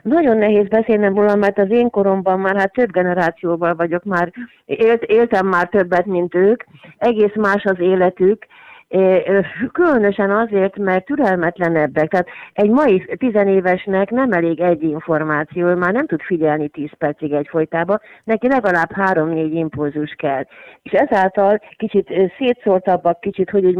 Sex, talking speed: female, 140 wpm